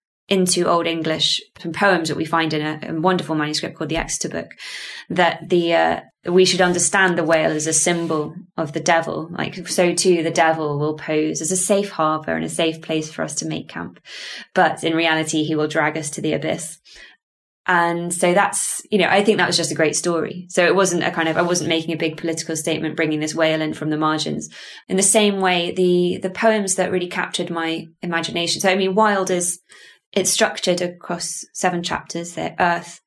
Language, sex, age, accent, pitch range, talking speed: English, female, 20-39, British, 165-185 Hz, 215 wpm